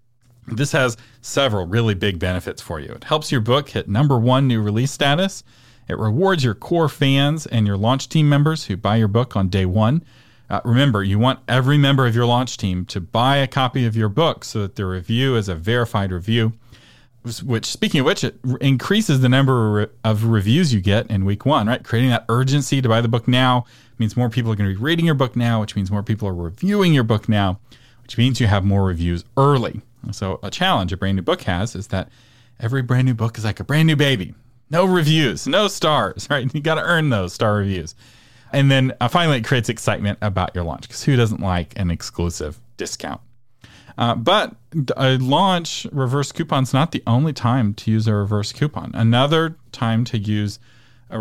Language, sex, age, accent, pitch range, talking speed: English, male, 40-59, American, 105-135 Hz, 210 wpm